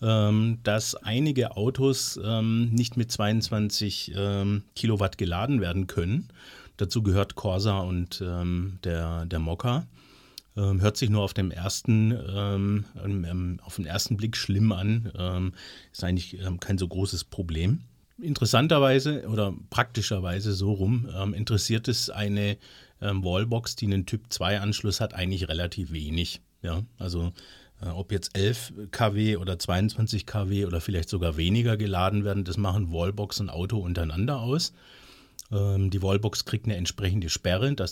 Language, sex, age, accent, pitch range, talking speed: German, male, 40-59, German, 95-110 Hz, 140 wpm